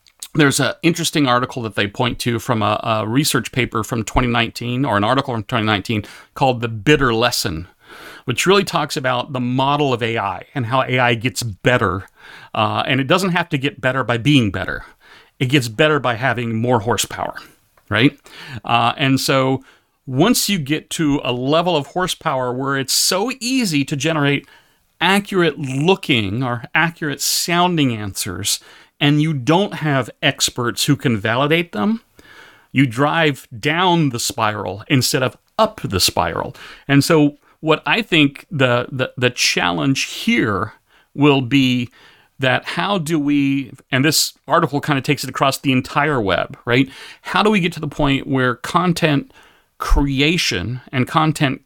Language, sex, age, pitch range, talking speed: English, male, 40-59, 120-155 Hz, 160 wpm